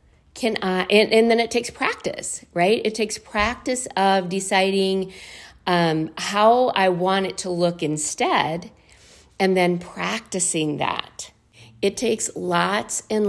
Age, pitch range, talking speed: 50-69, 170-210 Hz, 135 wpm